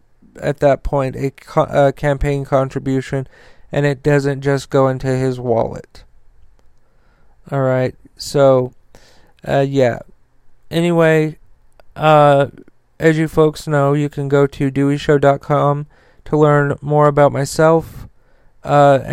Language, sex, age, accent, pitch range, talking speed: English, male, 40-59, American, 140-150 Hz, 115 wpm